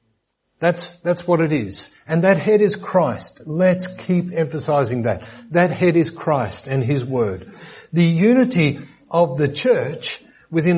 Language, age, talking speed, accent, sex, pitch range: English, 50-69, 150 wpm, Australian, male, 140-190 Hz